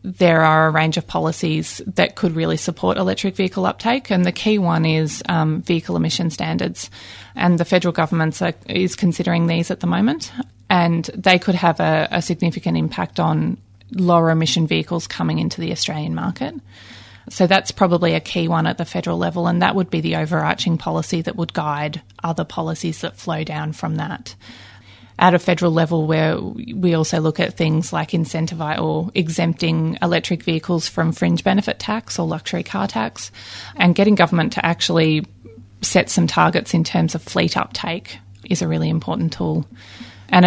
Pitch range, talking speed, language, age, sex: 150-175 Hz, 175 wpm, English, 20-39, female